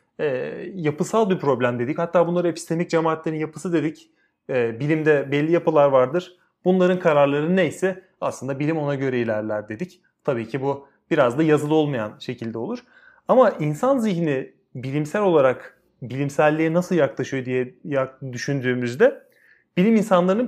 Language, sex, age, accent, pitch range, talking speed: Turkish, male, 30-49, native, 140-190 Hz, 130 wpm